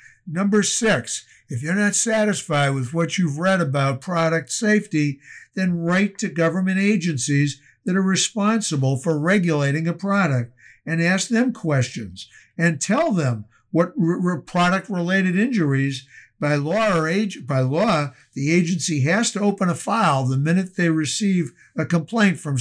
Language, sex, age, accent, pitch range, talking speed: English, male, 60-79, American, 140-190 Hz, 150 wpm